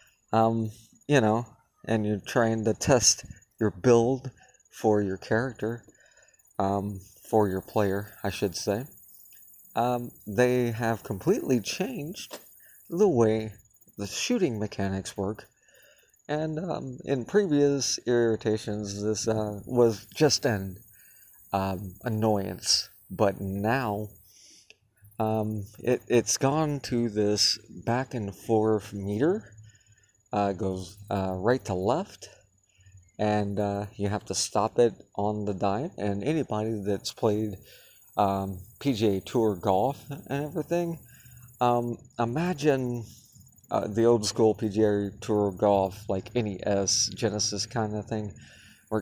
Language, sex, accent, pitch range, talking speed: English, male, American, 100-120 Hz, 120 wpm